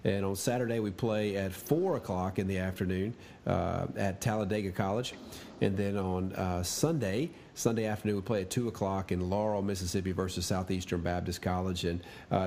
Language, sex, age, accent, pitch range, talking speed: English, male, 40-59, American, 100-125 Hz, 175 wpm